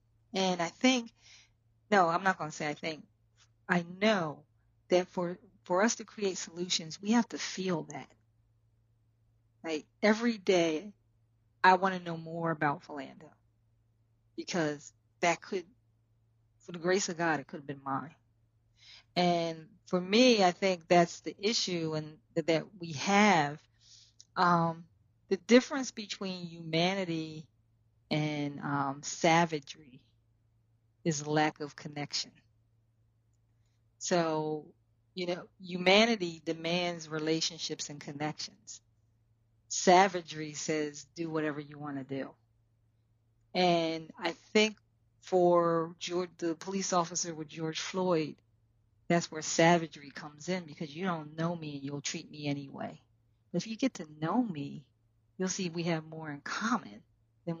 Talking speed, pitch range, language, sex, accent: 130 wpm, 115-175 Hz, English, female, American